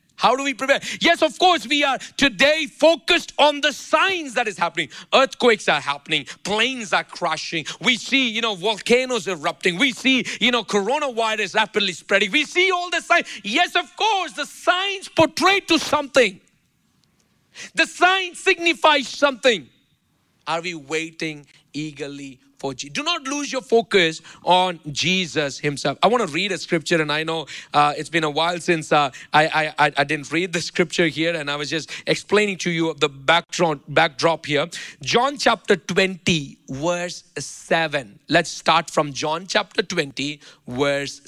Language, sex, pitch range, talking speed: English, male, 155-250 Hz, 165 wpm